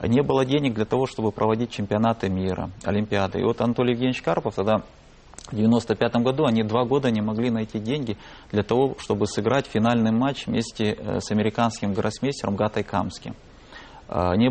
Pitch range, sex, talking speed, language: 105-125 Hz, male, 160 wpm, Russian